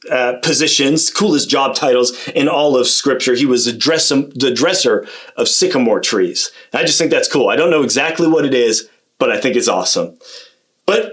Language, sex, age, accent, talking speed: English, male, 30-49, American, 185 wpm